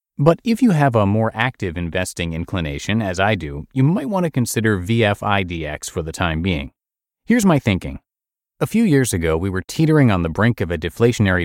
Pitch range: 85-130 Hz